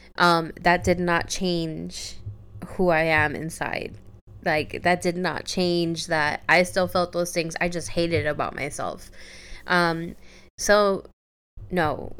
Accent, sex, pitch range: American, female, 160-185 Hz